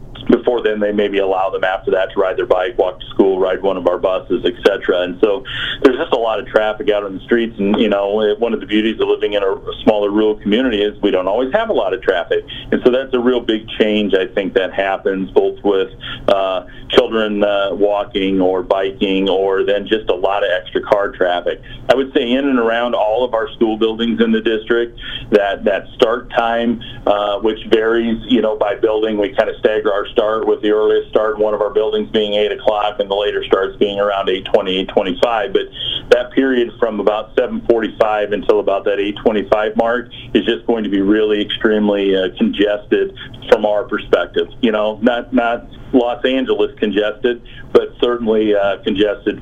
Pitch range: 100-125 Hz